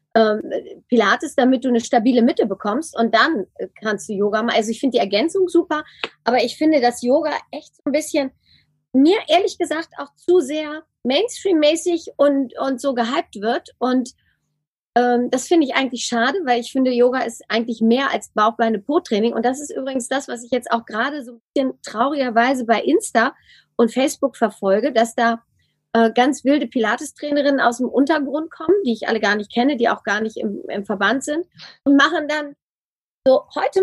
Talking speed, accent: 185 wpm, German